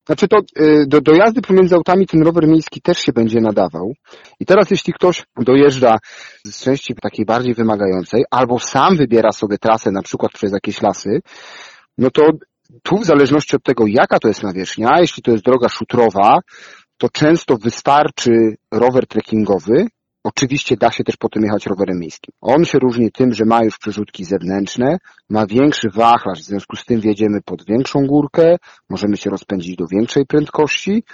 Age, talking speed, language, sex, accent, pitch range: 40-59, 170 wpm, Polish, male, native, 105-140 Hz